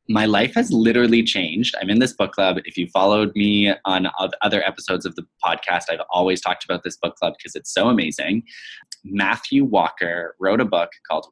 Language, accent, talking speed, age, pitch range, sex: English, American, 195 wpm, 20-39, 90-140 Hz, male